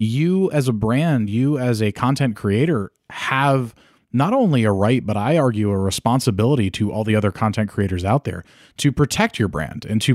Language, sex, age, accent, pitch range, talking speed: English, male, 20-39, American, 105-130 Hz, 195 wpm